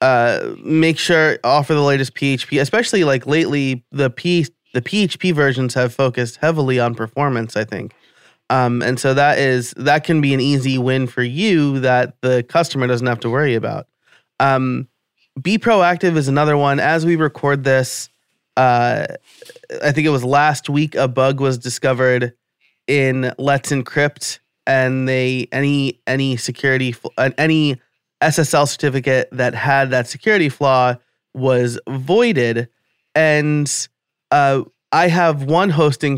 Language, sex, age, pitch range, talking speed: English, male, 20-39, 125-150 Hz, 150 wpm